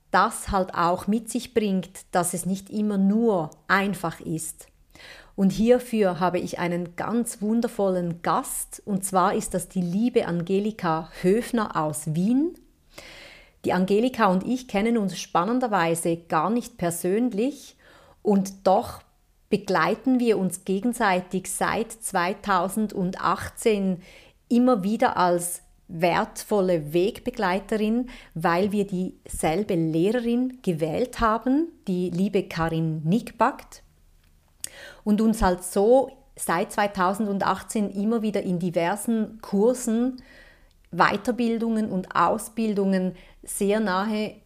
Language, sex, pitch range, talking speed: German, female, 180-230 Hz, 110 wpm